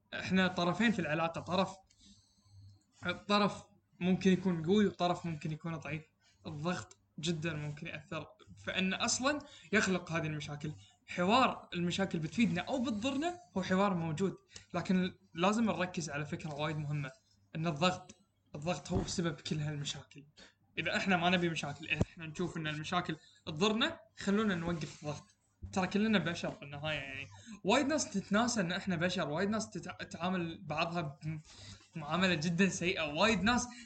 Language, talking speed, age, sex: Arabic, 140 wpm, 20-39, male